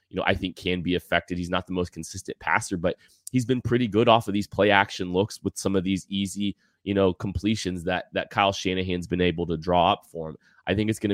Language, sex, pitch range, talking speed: English, male, 90-100 Hz, 255 wpm